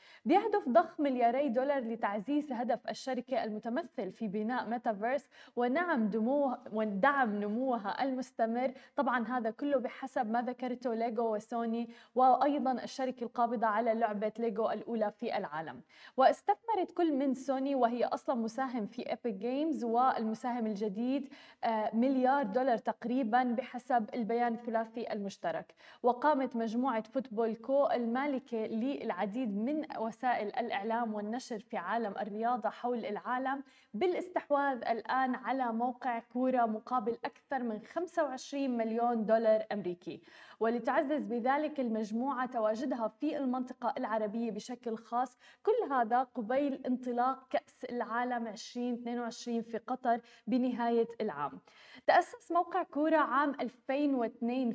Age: 20-39